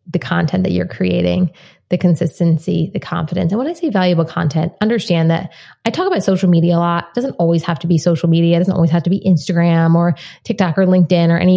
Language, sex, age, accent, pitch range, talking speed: English, female, 20-39, American, 160-185 Hz, 235 wpm